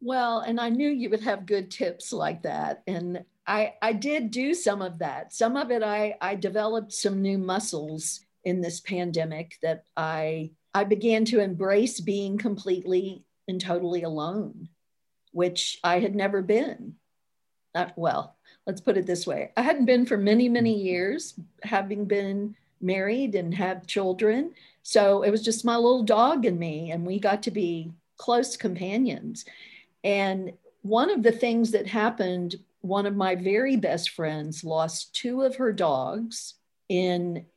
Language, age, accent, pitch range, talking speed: English, 50-69, American, 175-220 Hz, 165 wpm